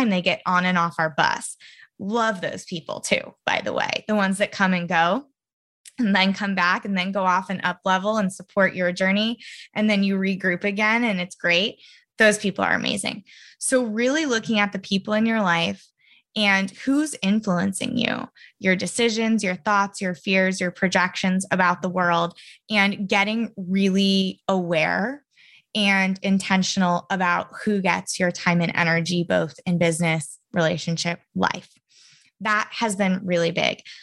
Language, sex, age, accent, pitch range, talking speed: English, female, 20-39, American, 180-210 Hz, 165 wpm